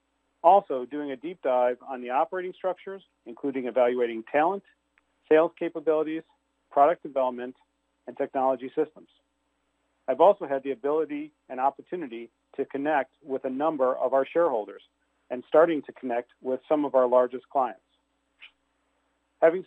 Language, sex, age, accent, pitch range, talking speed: English, male, 40-59, American, 130-160 Hz, 135 wpm